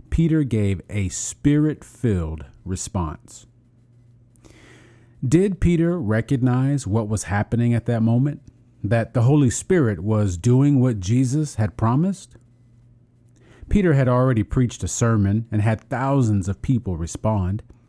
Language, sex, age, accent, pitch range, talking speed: English, male, 40-59, American, 105-130 Hz, 125 wpm